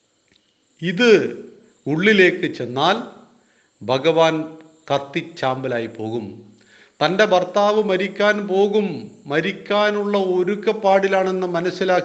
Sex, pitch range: male, 135-185 Hz